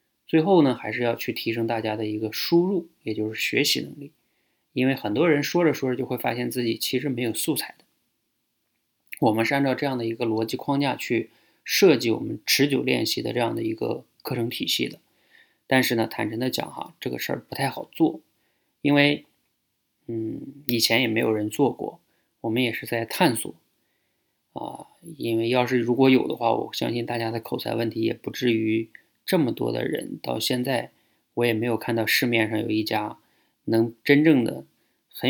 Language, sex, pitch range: Chinese, male, 115-130 Hz